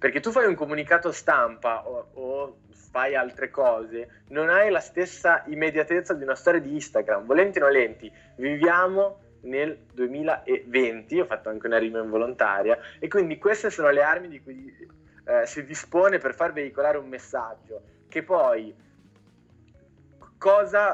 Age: 20-39